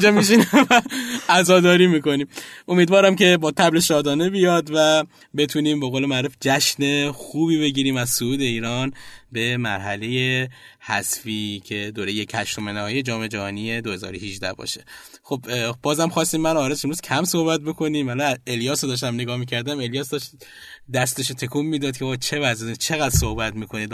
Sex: male